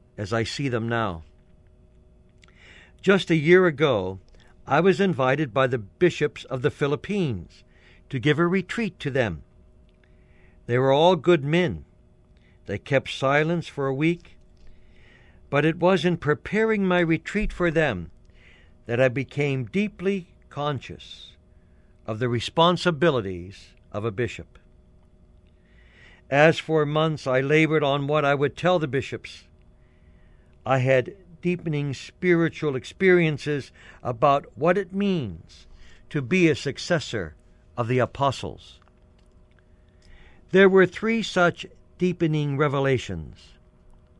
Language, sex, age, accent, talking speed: English, male, 60-79, American, 120 wpm